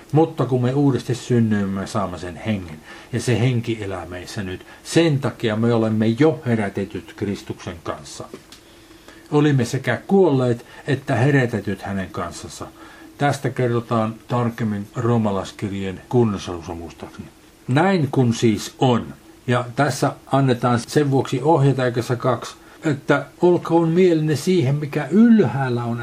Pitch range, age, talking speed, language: 110-155 Hz, 50-69, 120 wpm, Finnish